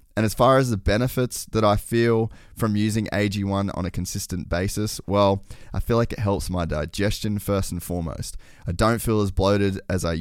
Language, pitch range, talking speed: English, 85-105 Hz, 200 wpm